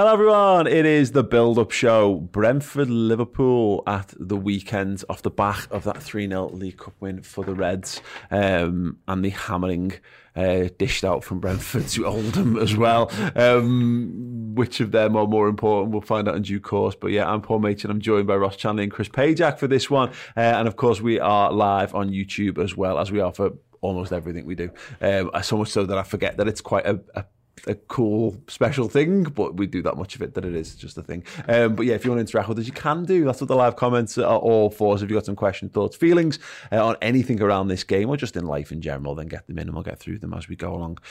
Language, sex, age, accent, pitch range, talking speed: English, male, 30-49, British, 100-125 Hz, 245 wpm